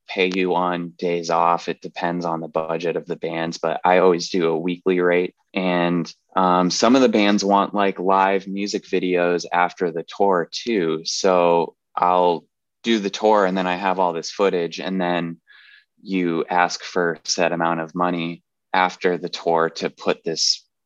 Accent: American